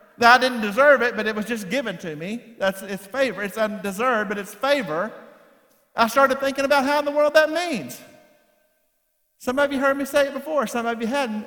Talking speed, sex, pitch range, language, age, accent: 215 wpm, male, 200-280 Hz, English, 50-69, American